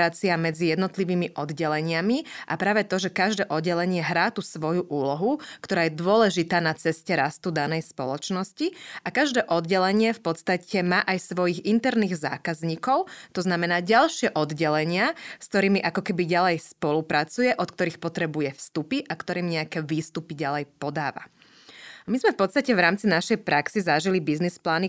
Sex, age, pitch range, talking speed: female, 20-39, 160-200 Hz, 145 wpm